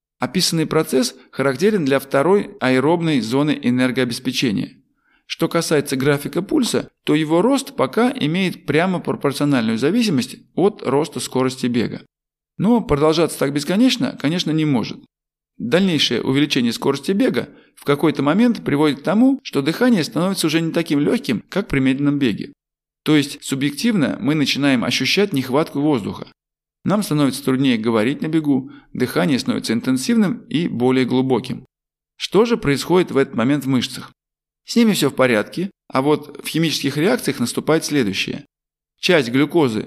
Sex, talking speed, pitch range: male, 140 wpm, 135-175 Hz